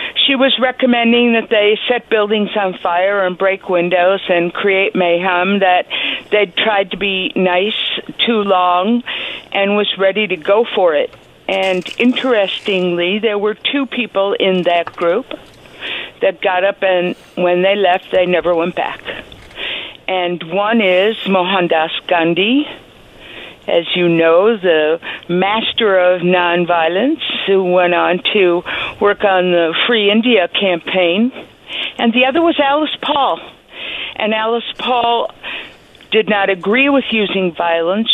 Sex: female